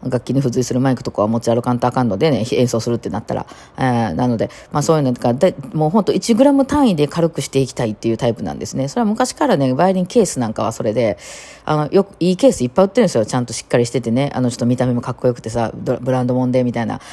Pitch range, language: 125-180 Hz, Japanese